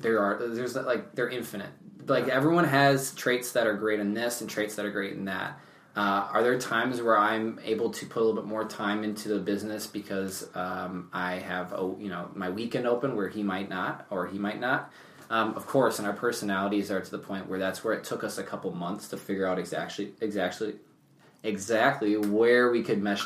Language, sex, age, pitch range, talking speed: English, male, 20-39, 95-120 Hz, 220 wpm